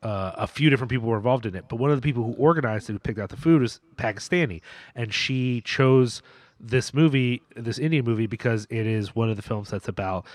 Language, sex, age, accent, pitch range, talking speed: English, male, 30-49, American, 115-160 Hz, 240 wpm